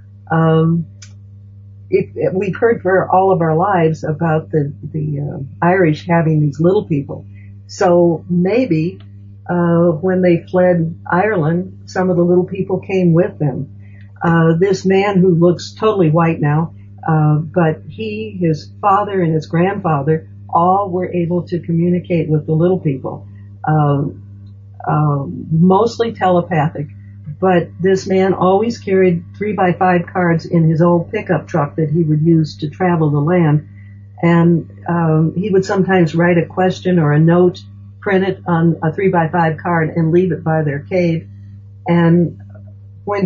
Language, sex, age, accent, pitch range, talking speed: English, female, 60-79, American, 145-180 Hz, 155 wpm